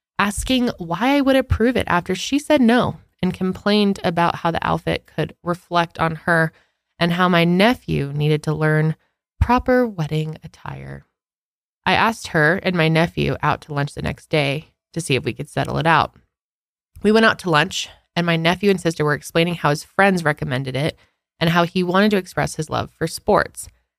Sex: female